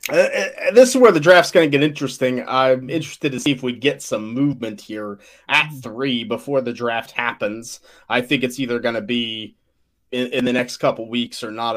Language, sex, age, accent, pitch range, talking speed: English, male, 30-49, American, 120-145 Hz, 210 wpm